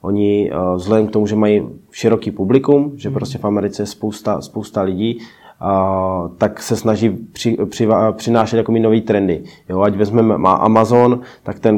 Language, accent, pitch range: Czech, native, 105-115 Hz